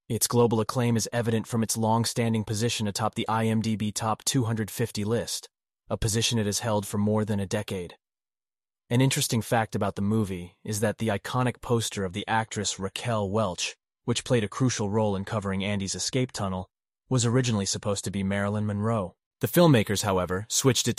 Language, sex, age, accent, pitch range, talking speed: English, male, 30-49, American, 100-115 Hz, 180 wpm